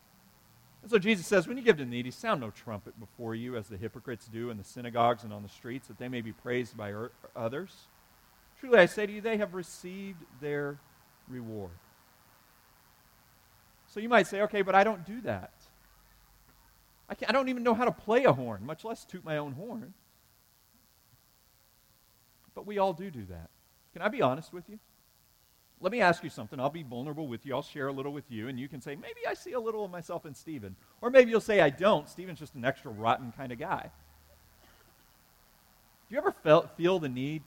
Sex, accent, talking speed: male, American, 210 wpm